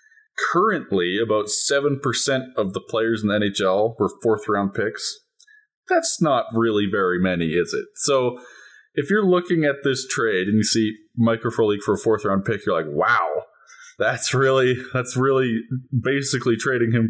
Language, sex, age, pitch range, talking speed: English, male, 20-39, 100-125 Hz, 155 wpm